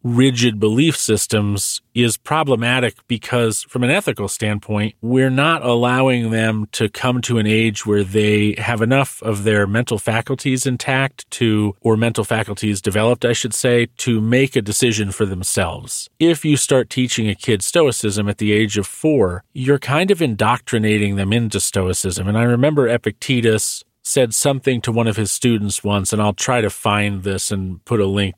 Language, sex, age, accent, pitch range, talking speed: English, male, 40-59, American, 105-125 Hz, 175 wpm